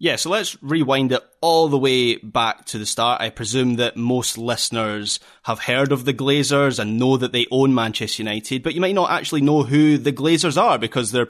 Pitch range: 110-135 Hz